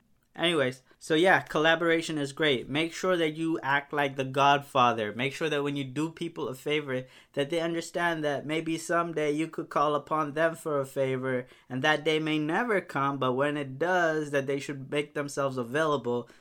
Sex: male